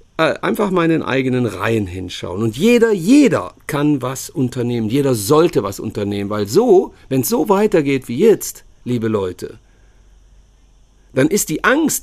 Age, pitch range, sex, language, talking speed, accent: 50-69, 110-155 Hz, male, German, 145 wpm, German